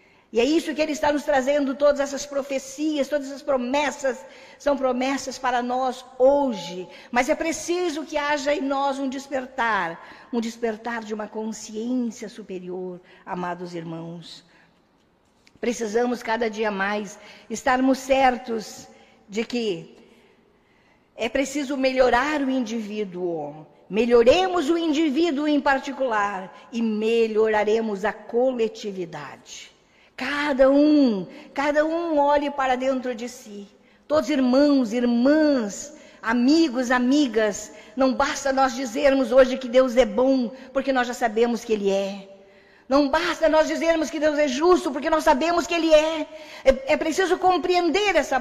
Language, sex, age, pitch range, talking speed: Portuguese, female, 50-69, 220-285 Hz, 135 wpm